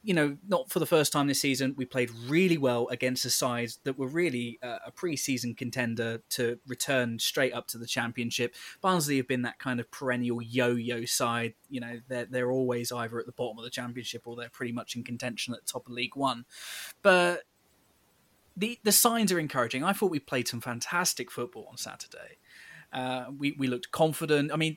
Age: 20-39